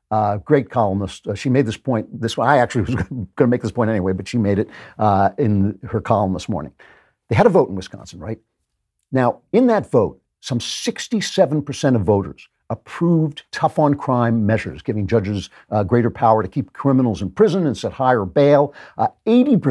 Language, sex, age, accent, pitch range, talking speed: English, male, 60-79, American, 105-140 Hz, 185 wpm